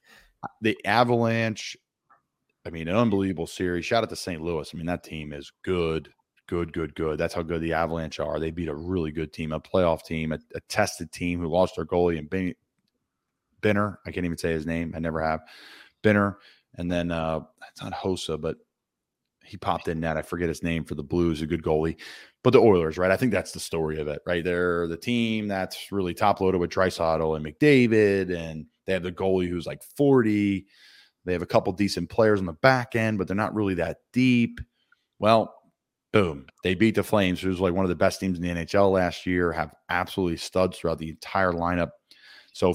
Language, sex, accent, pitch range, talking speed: English, male, American, 80-100 Hz, 210 wpm